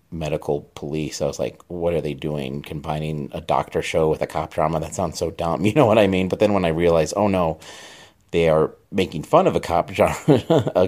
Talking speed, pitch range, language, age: 225 wpm, 80-105 Hz, English, 30-49